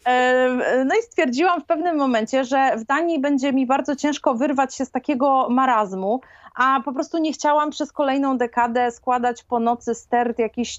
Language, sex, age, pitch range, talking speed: Polish, female, 30-49, 230-285 Hz, 170 wpm